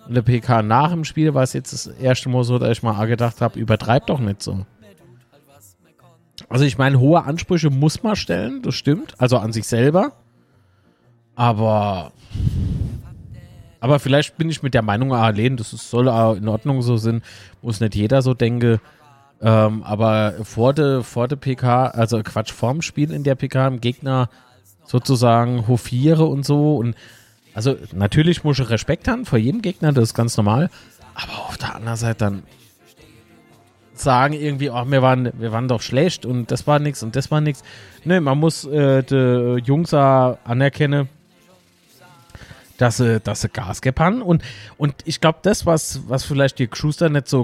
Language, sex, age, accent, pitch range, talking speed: German, male, 30-49, German, 115-145 Hz, 175 wpm